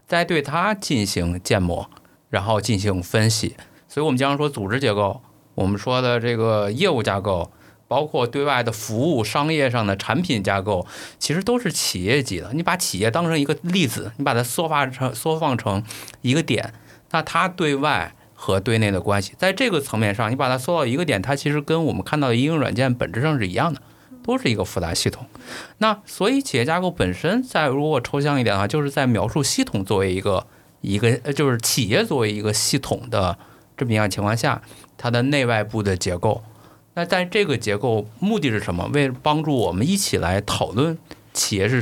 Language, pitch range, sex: Chinese, 105-145 Hz, male